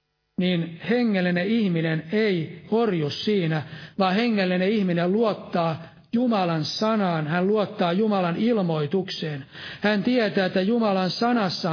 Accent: native